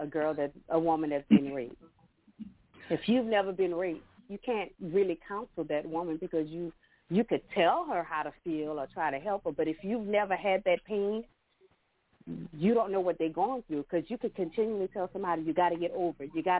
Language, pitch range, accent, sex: English, 145-185 Hz, American, female